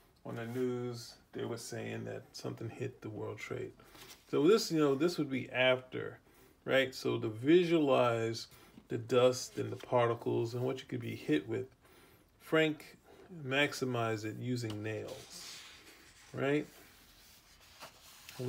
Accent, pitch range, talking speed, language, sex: American, 115-135 Hz, 140 wpm, English, male